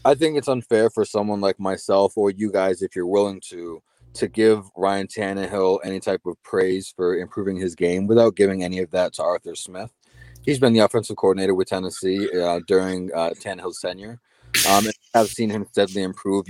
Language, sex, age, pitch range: English, male, 30-49, 90-100 Hz